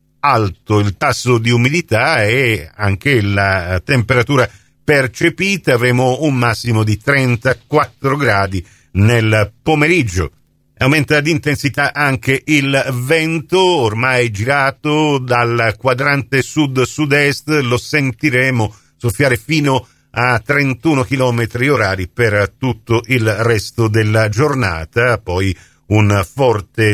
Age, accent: 50-69, native